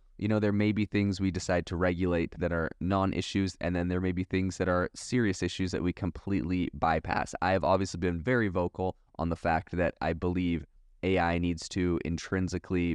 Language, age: English, 20-39